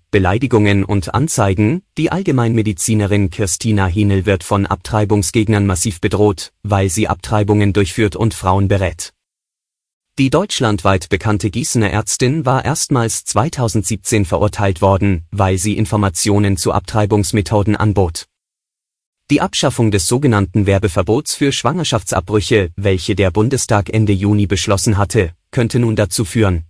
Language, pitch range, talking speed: German, 100-120 Hz, 120 wpm